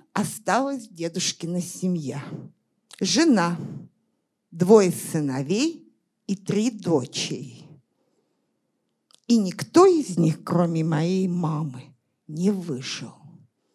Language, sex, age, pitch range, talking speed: Russian, female, 50-69, 180-285 Hz, 80 wpm